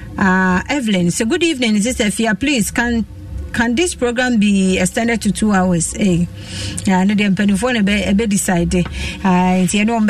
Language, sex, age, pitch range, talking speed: English, female, 50-69, 190-235 Hz, 190 wpm